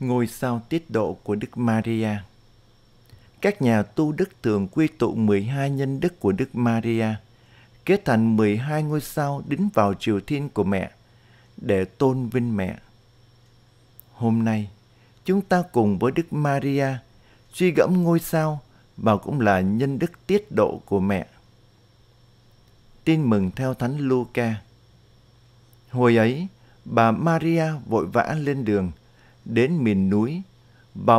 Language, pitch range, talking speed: Vietnamese, 110-145 Hz, 140 wpm